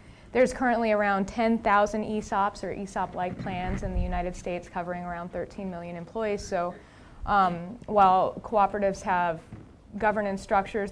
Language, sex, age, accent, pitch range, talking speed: English, female, 20-39, American, 185-225 Hz, 130 wpm